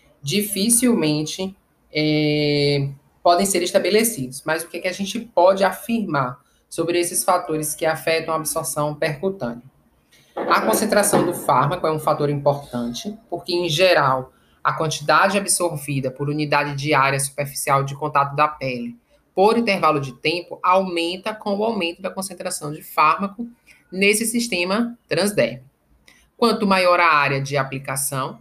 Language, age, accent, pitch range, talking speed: Portuguese, 20-39, Brazilian, 145-190 Hz, 135 wpm